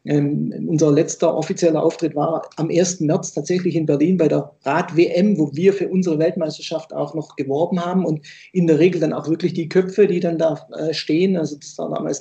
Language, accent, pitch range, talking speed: German, German, 155-180 Hz, 205 wpm